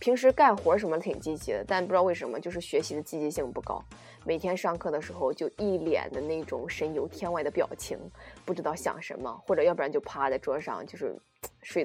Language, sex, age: Chinese, female, 20-39